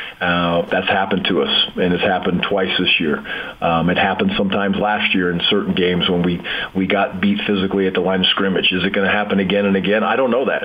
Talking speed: 240 wpm